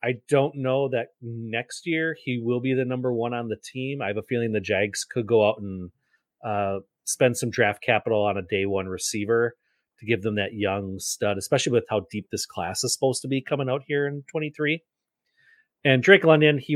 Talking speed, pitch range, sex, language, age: 215 wpm, 105-140 Hz, male, English, 30-49